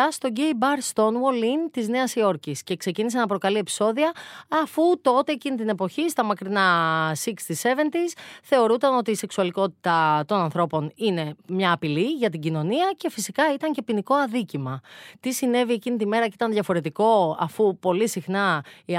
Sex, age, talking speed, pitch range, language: female, 30-49, 165 wpm, 175-250 Hz, Greek